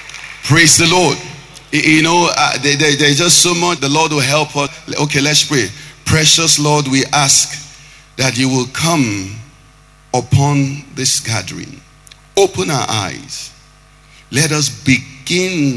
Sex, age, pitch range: male, 50-69, 125-155 Hz